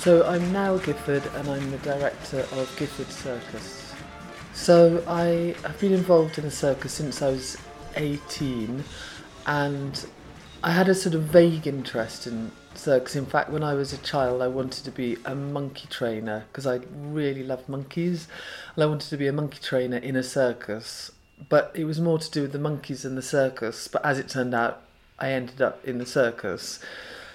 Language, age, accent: English, 40-59, British